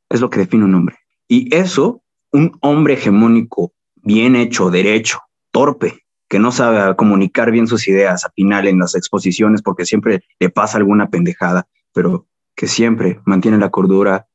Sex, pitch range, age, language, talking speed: male, 100-125 Hz, 20-39, Spanish, 165 wpm